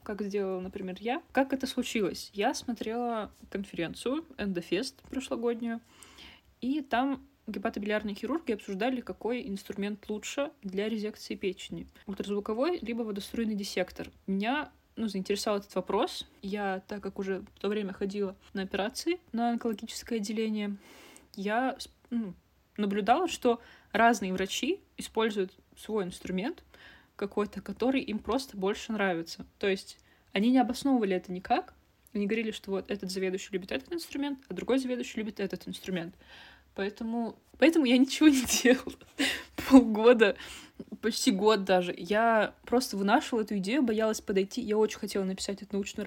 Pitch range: 195-245 Hz